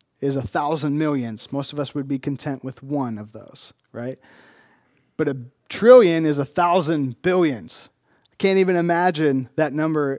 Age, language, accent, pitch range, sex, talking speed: 40-59, English, American, 125-155 Hz, male, 165 wpm